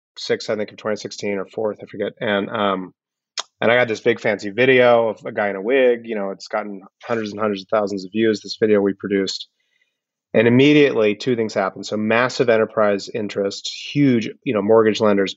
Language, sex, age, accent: English, male, 30-49, American